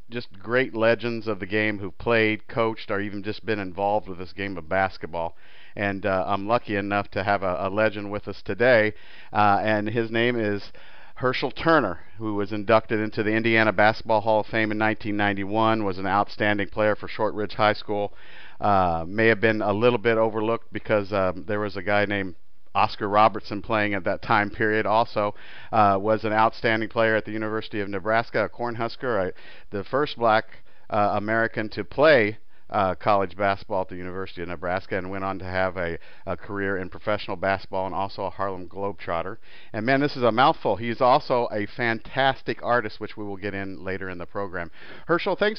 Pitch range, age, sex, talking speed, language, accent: 100-115 Hz, 50-69, male, 195 wpm, English, American